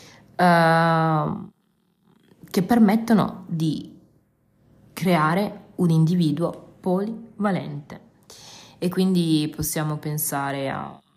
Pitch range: 150-195 Hz